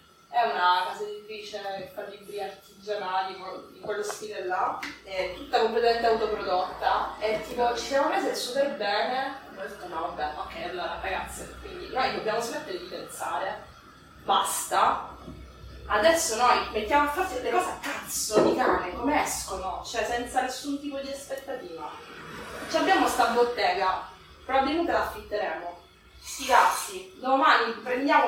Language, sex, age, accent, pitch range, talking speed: Italian, female, 20-39, native, 215-305 Hz, 145 wpm